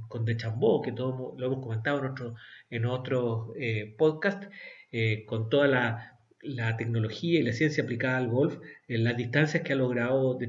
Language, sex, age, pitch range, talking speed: Spanish, male, 40-59, 120-150 Hz, 185 wpm